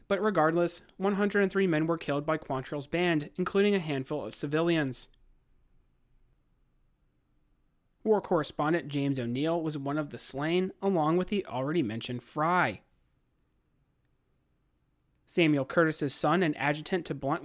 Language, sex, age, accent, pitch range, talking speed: English, male, 30-49, American, 130-170 Hz, 125 wpm